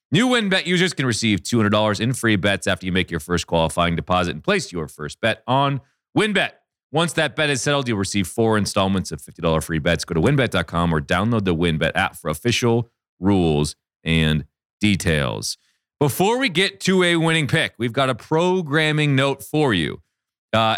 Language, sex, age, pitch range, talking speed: English, male, 30-49, 100-140 Hz, 185 wpm